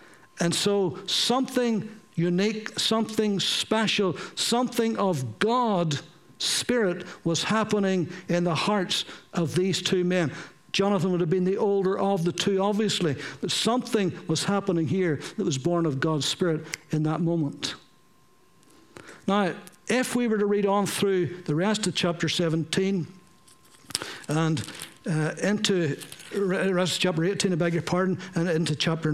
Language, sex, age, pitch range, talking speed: English, male, 60-79, 165-205 Hz, 140 wpm